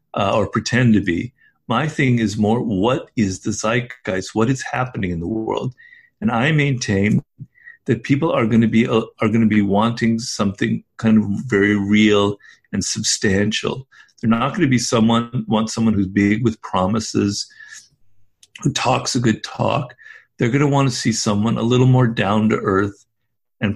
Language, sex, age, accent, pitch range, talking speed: English, male, 50-69, American, 105-125 Hz, 180 wpm